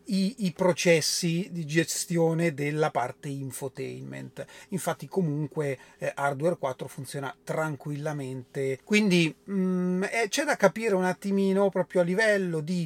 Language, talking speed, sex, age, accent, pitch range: Italian, 105 wpm, male, 30-49, native, 140-190 Hz